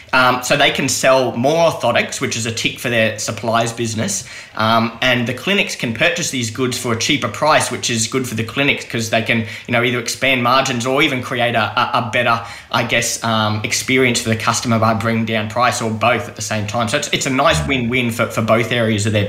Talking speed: 235 wpm